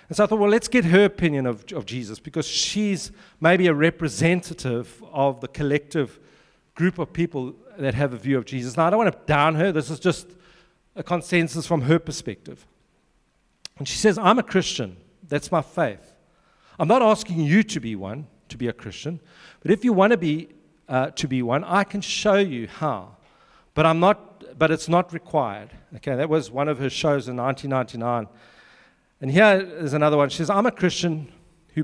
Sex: male